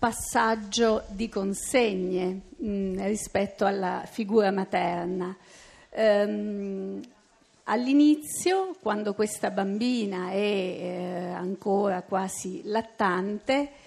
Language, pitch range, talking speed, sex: Italian, 195-230 Hz, 75 wpm, female